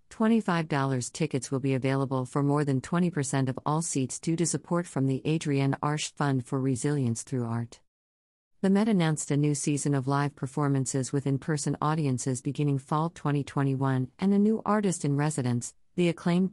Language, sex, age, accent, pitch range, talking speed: English, female, 50-69, American, 130-165 Hz, 165 wpm